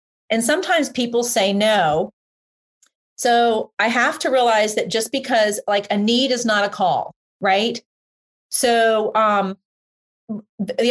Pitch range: 200-245 Hz